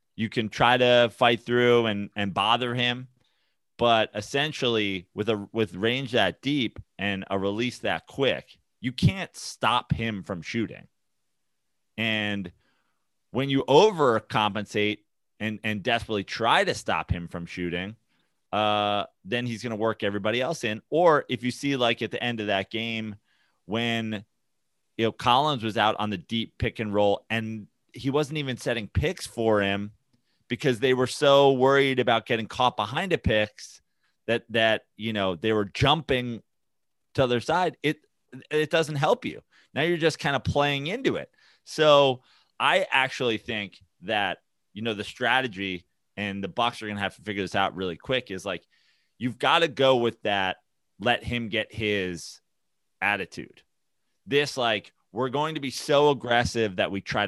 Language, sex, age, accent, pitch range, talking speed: English, male, 30-49, American, 105-130 Hz, 170 wpm